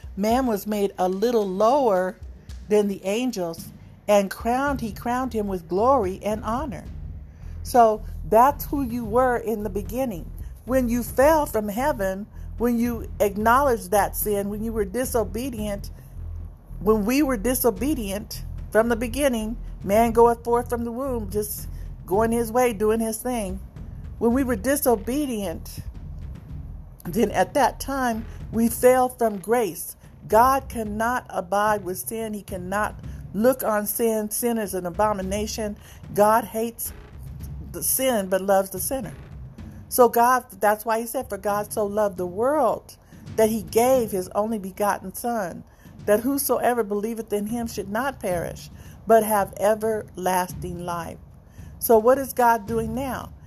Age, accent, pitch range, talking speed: 50-69, American, 200-240 Hz, 145 wpm